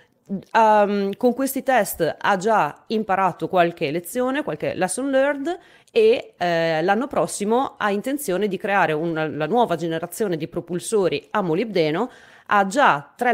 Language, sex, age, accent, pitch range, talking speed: Italian, female, 30-49, native, 160-215 Hz, 140 wpm